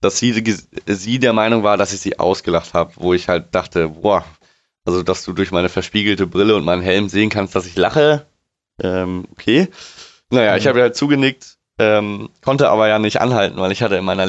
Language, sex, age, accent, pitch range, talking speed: German, male, 20-39, German, 100-120 Hz, 205 wpm